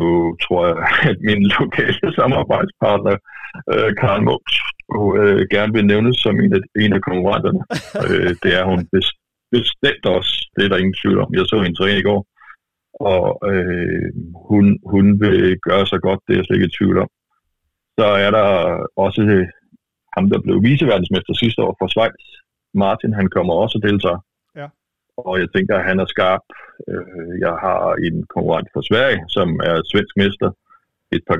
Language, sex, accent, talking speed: Danish, male, native, 175 wpm